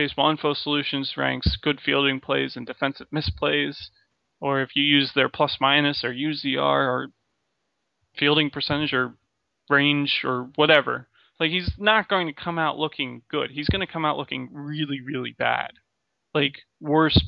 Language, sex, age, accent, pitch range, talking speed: English, male, 20-39, American, 130-155 Hz, 155 wpm